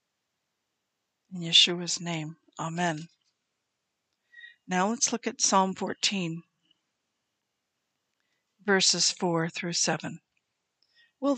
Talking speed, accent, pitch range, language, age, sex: 80 wpm, American, 170-210 Hz, English, 60-79, female